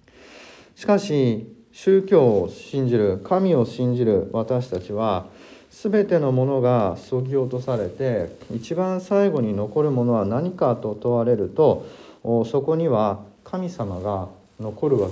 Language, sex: Japanese, male